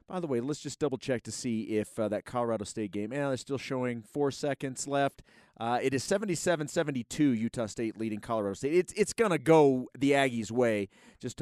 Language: English